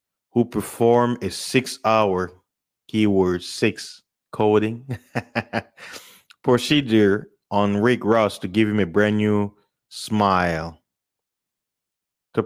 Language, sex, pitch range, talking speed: English, male, 100-125 Hz, 85 wpm